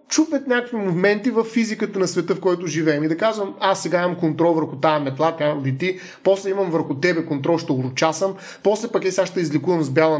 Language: Bulgarian